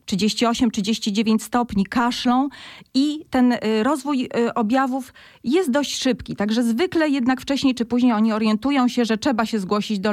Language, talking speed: Polish, 135 wpm